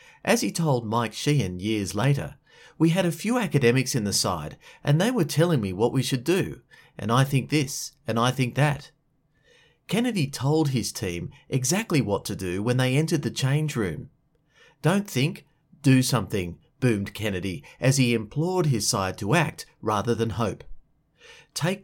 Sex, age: male, 30-49